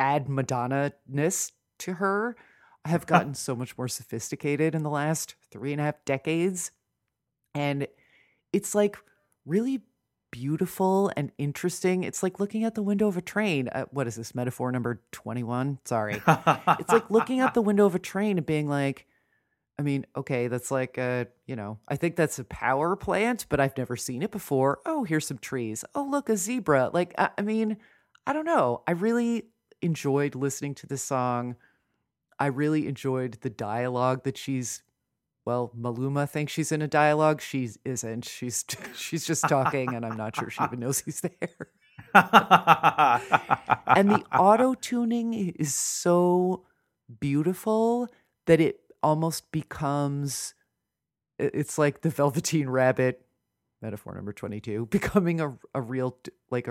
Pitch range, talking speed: 125-185 Hz, 160 wpm